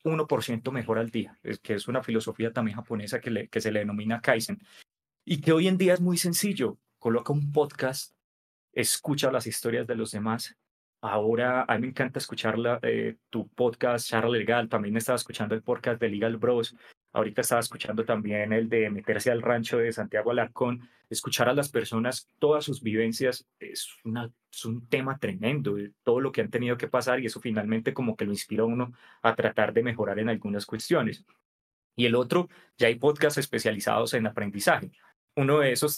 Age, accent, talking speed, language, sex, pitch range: 20-39, Colombian, 190 wpm, Spanish, male, 110-130 Hz